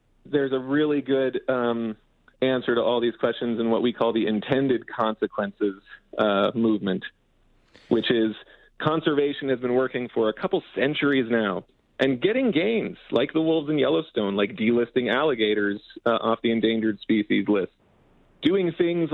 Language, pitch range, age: English, 110-135 Hz, 40-59